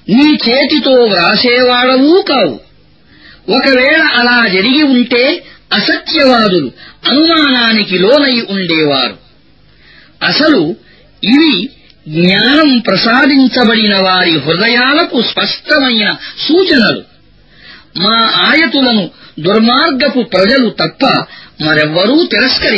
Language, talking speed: Arabic, 85 wpm